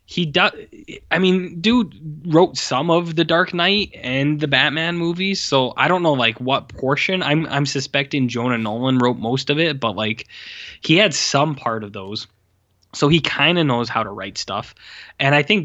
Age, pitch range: 10-29, 115-145 Hz